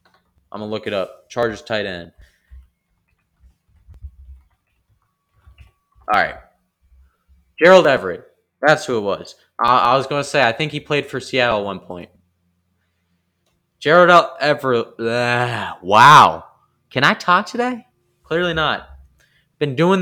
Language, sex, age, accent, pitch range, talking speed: English, male, 20-39, American, 90-145 Hz, 125 wpm